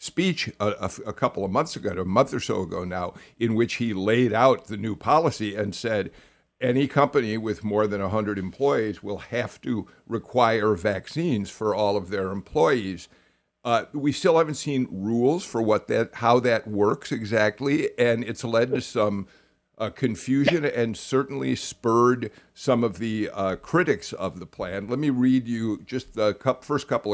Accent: American